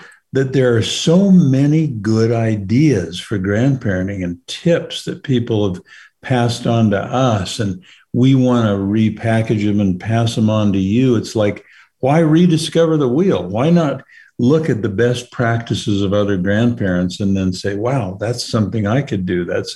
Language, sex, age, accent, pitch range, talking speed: English, male, 60-79, American, 100-135 Hz, 170 wpm